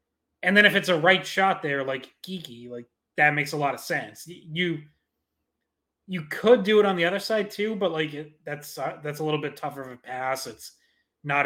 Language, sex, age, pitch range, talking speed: English, male, 20-39, 135-170 Hz, 225 wpm